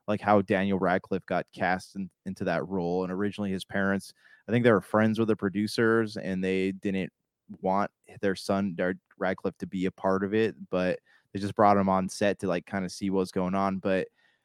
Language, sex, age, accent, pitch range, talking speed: English, male, 20-39, American, 95-115 Hz, 210 wpm